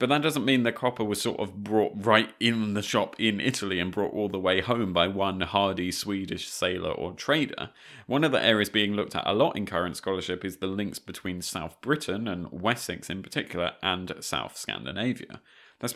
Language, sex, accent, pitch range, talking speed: English, male, British, 95-120 Hz, 205 wpm